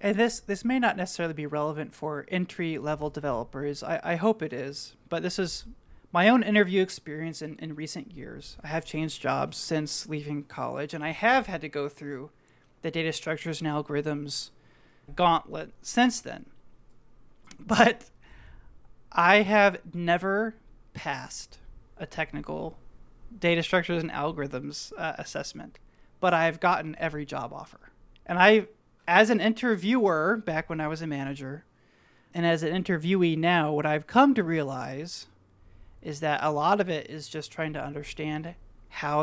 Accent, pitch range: American, 150-180 Hz